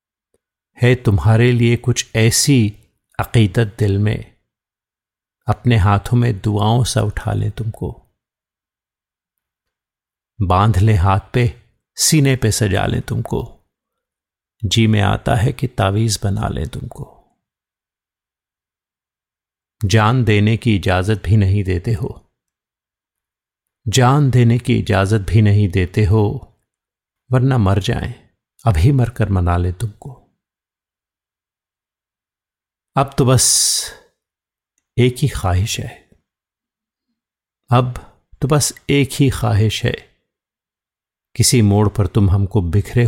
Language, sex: Hindi, male